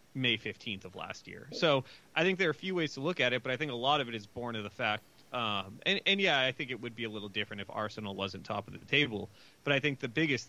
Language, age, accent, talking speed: English, 30-49, American, 305 wpm